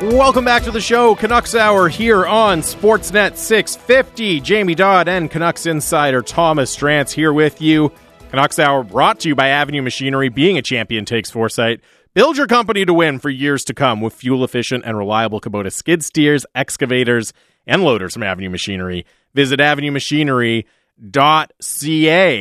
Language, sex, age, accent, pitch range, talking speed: English, male, 30-49, American, 115-155 Hz, 160 wpm